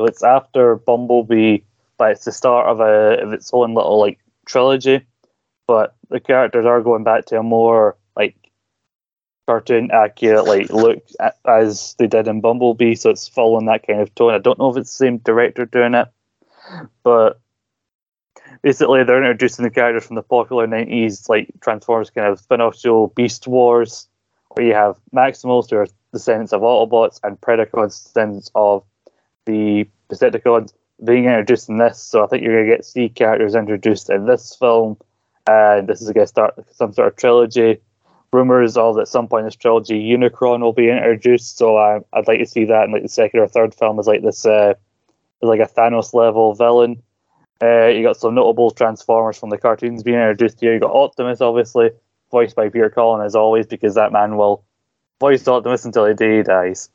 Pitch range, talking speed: 110-120 Hz, 190 wpm